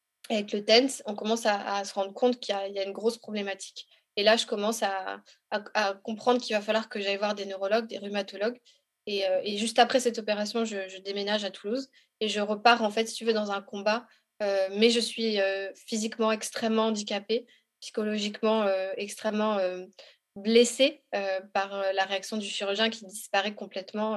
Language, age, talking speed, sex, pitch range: French, 20-39, 205 wpm, female, 195-225 Hz